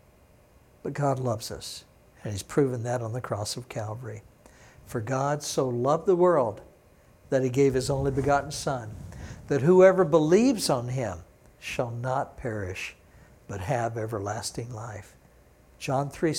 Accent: American